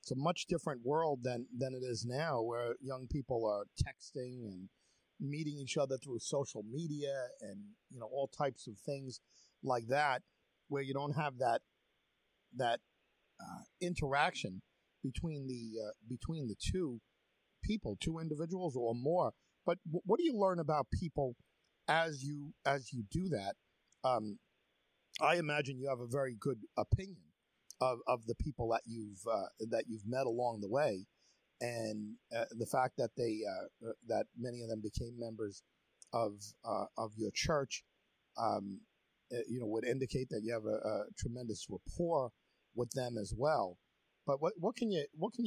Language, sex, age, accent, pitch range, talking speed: English, male, 50-69, American, 115-150 Hz, 170 wpm